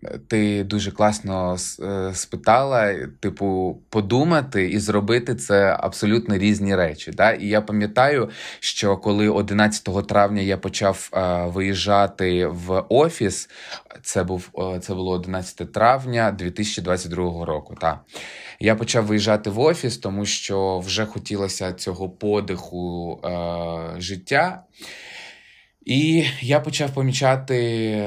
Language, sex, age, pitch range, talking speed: Ukrainian, male, 20-39, 95-110 Hz, 110 wpm